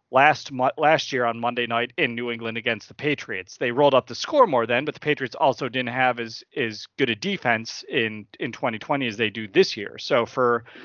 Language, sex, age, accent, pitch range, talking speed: English, male, 30-49, American, 115-140 Hz, 220 wpm